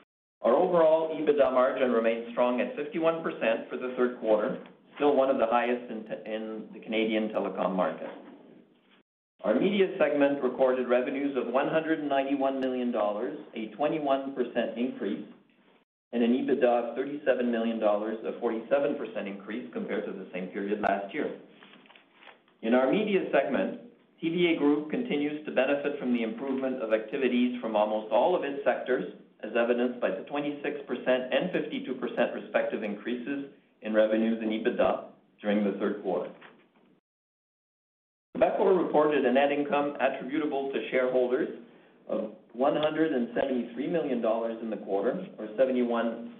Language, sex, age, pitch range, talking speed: English, male, 50-69, 110-140 Hz, 140 wpm